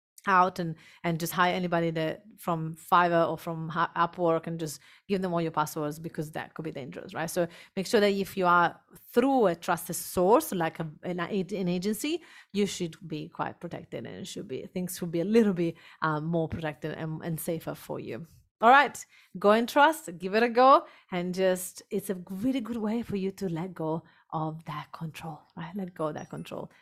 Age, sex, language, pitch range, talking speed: 30-49, female, English, 165-200 Hz, 205 wpm